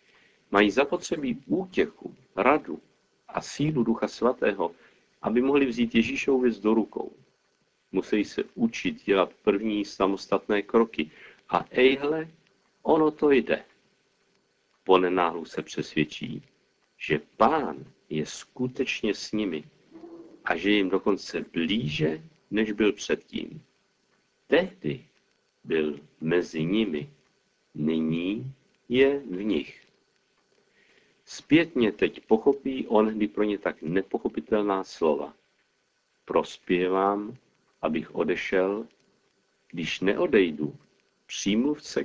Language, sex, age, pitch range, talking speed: Czech, male, 50-69, 95-130 Hz, 100 wpm